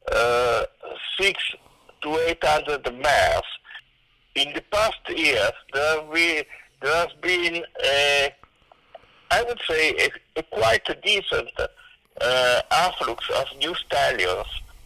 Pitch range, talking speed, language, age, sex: 130-190 Hz, 95 wpm, English, 60-79, male